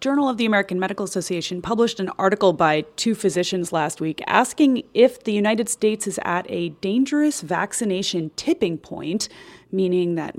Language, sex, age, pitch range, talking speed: English, female, 30-49, 155-205 Hz, 160 wpm